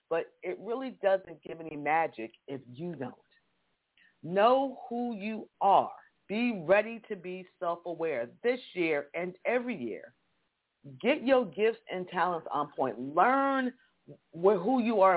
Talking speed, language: 140 wpm, English